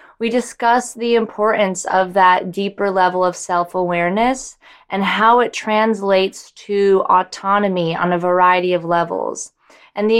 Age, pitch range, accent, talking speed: 20-39, 180-220 Hz, American, 135 wpm